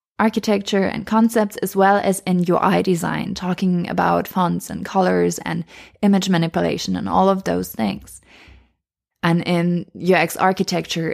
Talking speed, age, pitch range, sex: 140 wpm, 20-39, 170-210 Hz, female